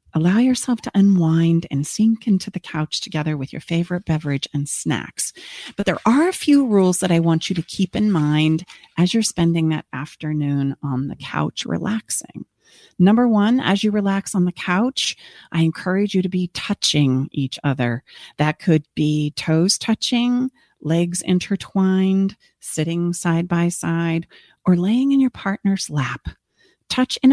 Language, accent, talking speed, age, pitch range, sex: English, American, 165 wpm, 40-59, 155-210 Hz, female